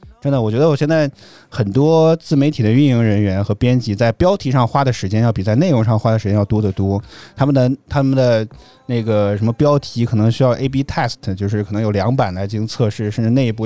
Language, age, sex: Chinese, 20-39, male